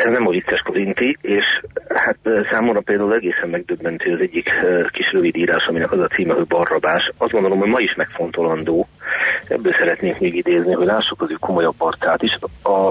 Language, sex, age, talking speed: Hungarian, male, 40-59, 180 wpm